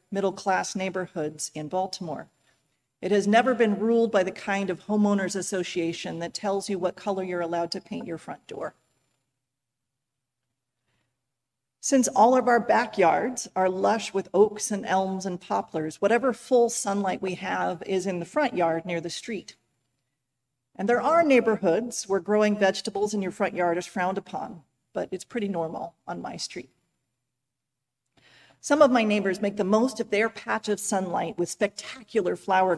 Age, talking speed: 40-59, 165 wpm